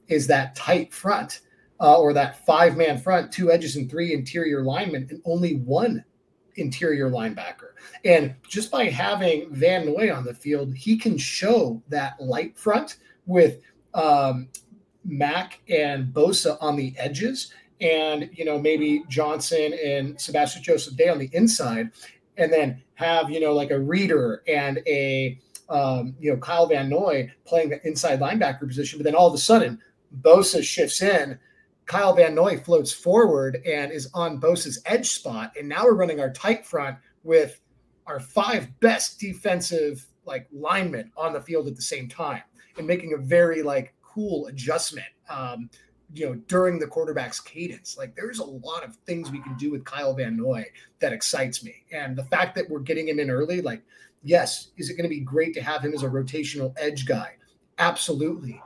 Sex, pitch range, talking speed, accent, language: male, 140-175 Hz, 175 wpm, American, English